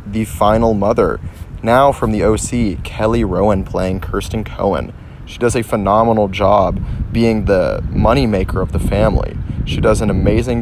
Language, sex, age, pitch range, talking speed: English, male, 30-49, 95-110 Hz, 160 wpm